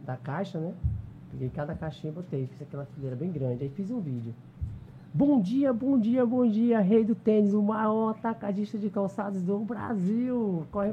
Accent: Brazilian